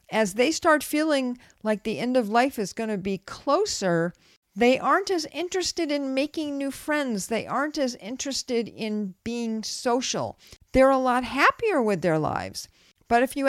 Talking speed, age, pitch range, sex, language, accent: 175 wpm, 50-69, 210-290 Hz, female, English, American